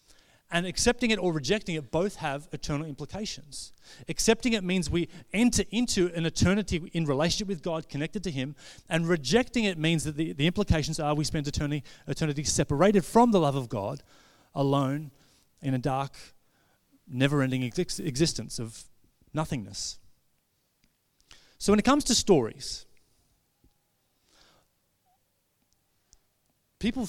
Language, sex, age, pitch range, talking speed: English, male, 30-49, 130-180 Hz, 135 wpm